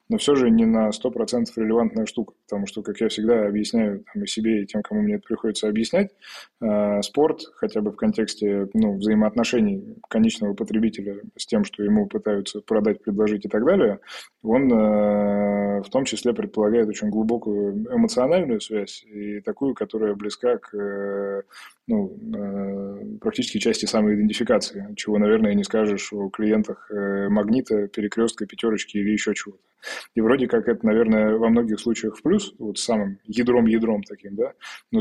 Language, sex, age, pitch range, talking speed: Russian, male, 20-39, 105-120 Hz, 155 wpm